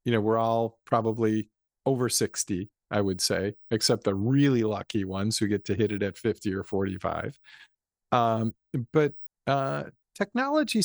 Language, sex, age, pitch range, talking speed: English, male, 50-69, 110-140 Hz, 155 wpm